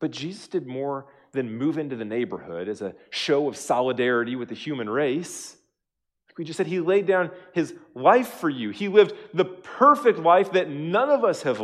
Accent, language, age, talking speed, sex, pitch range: American, English, 40-59, 195 wpm, male, 155-230 Hz